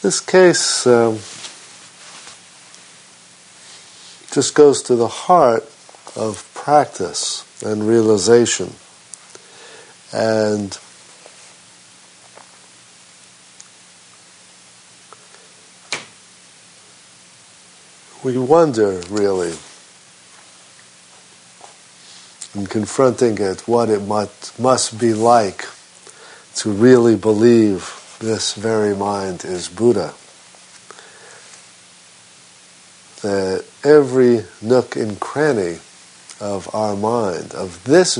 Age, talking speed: 50-69, 65 wpm